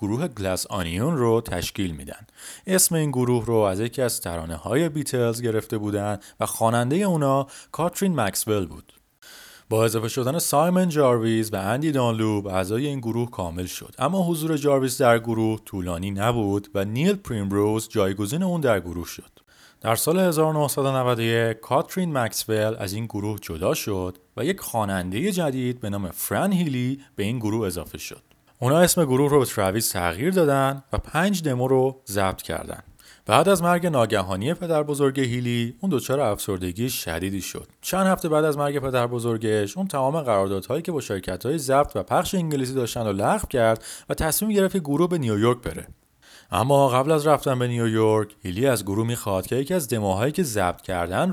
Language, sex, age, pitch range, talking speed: Persian, male, 30-49, 100-145 Hz, 170 wpm